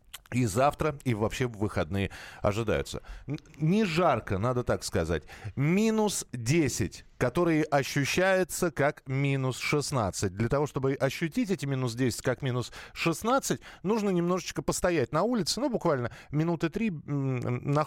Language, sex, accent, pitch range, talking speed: Russian, male, native, 115-170 Hz, 130 wpm